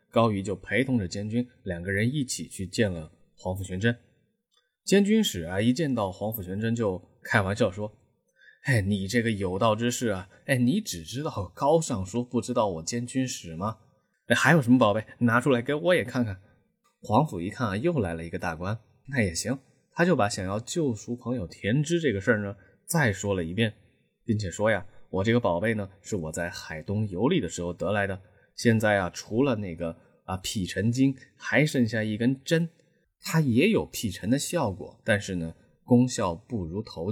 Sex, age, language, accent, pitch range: male, 20-39, Chinese, native, 100-130 Hz